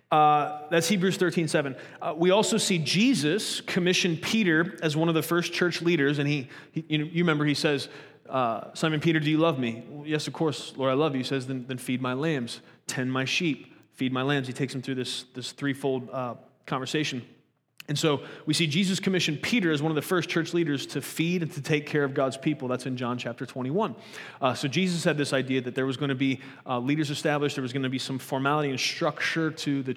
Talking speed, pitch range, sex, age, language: 240 wpm, 130-160 Hz, male, 30-49, English